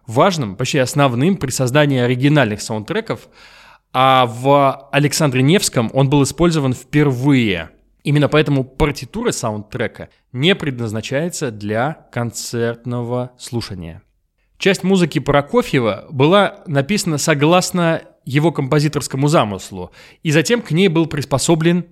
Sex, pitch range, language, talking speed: male, 120-165 Hz, Russian, 105 wpm